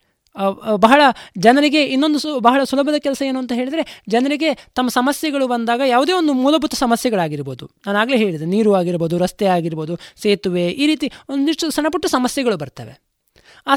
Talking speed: 145 wpm